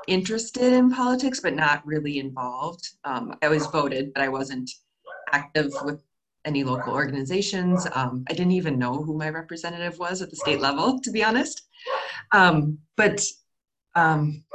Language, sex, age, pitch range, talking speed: English, female, 20-39, 135-175 Hz, 155 wpm